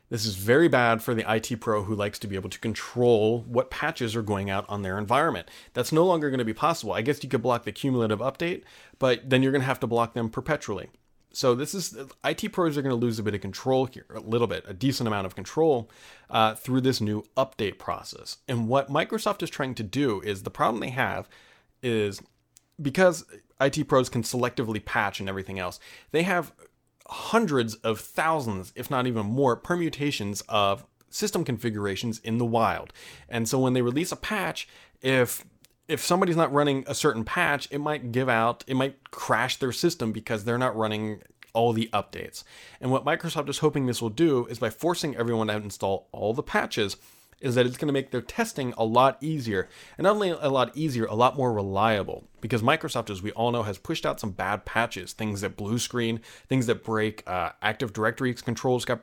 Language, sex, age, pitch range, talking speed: English, male, 30-49, 110-140 Hz, 210 wpm